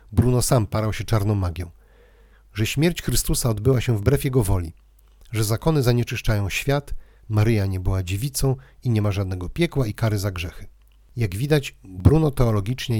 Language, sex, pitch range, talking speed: Polish, male, 100-135 Hz, 160 wpm